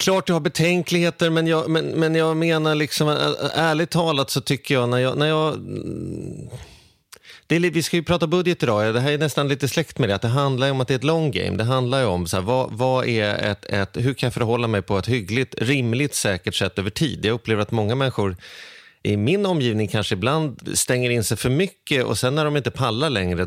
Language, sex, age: Swedish, male, 30-49